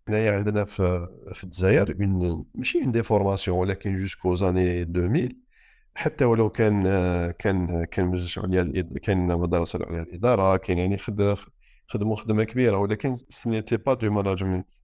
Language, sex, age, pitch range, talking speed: Arabic, male, 50-69, 90-125 Hz, 140 wpm